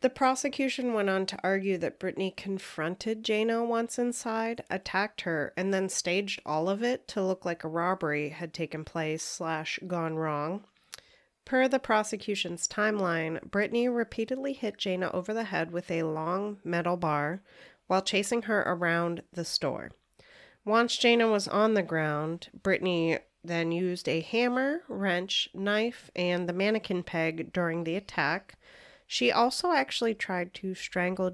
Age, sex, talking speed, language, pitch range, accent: 30-49, female, 150 wpm, English, 170-215 Hz, American